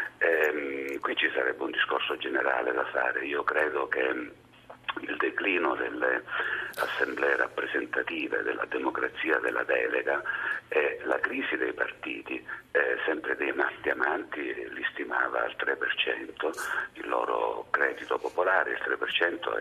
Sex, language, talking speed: male, Italian, 120 wpm